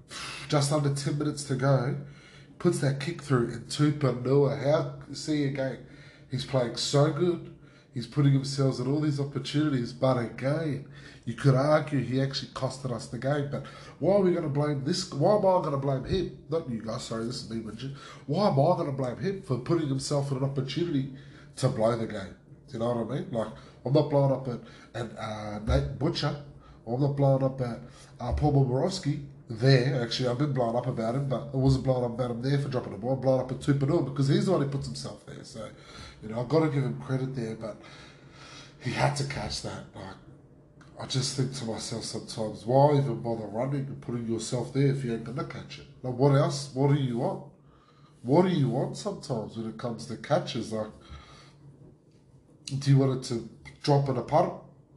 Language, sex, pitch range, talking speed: English, male, 125-150 Hz, 215 wpm